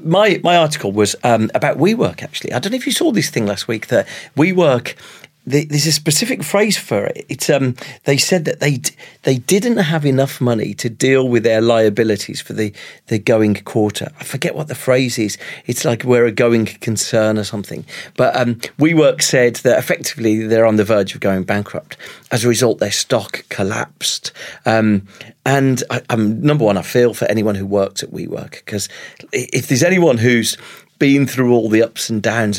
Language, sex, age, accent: English, male, 40-59, British